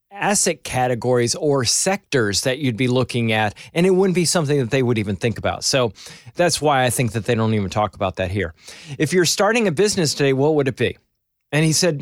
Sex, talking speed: male, 230 wpm